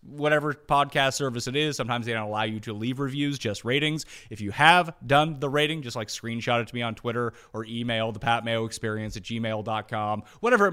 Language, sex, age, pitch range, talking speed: English, male, 30-49, 115-170 Hz, 205 wpm